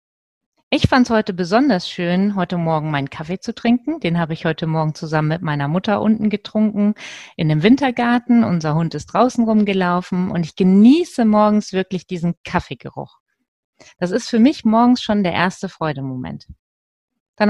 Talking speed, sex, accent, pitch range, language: 165 wpm, female, German, 165-230 Hz, German